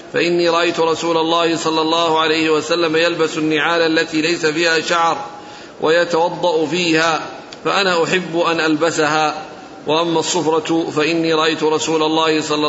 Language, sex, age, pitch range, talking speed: Arabic, male, 50-69, 155-170 Hz, 130 wpm